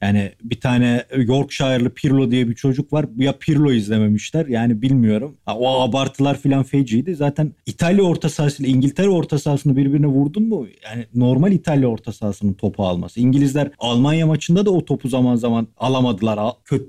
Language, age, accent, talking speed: Turkish, 40-59, native, 165 wpm